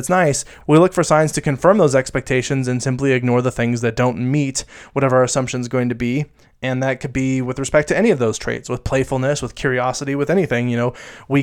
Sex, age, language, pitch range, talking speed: male, 20-39, English, 125-140 Hz, 235 wpm